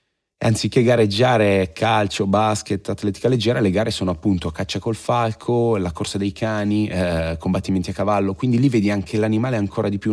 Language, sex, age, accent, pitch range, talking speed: Italian, male, 30-49, native, 95-110 Hz, 170 wpm